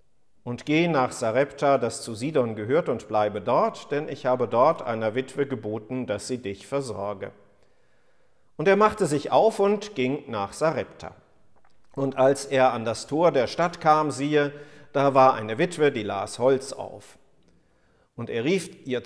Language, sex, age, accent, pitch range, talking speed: German, male, 50-69, German, 125-165 Hz, 165 wpm